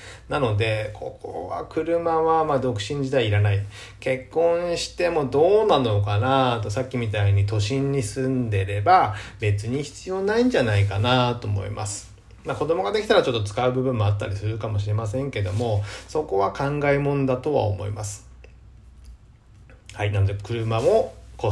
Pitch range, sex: 105-155 Hz, male